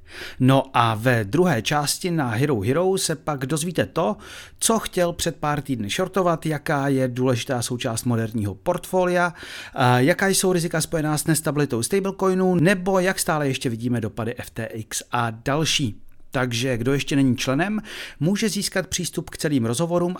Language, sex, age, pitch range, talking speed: Czech, male, 40-59, 120-170 Hz, 150 wpm